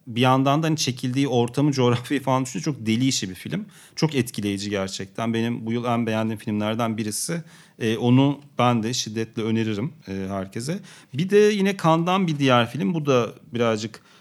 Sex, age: male, 40-59